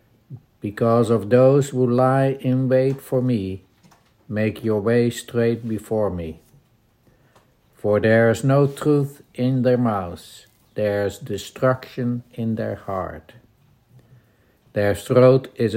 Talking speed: 120 wpm